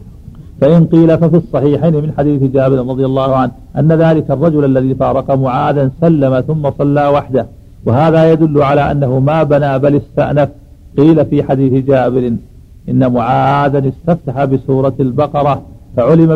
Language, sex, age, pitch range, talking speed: Arabic, male, 50-69, 130-145 Hz, 140 wpm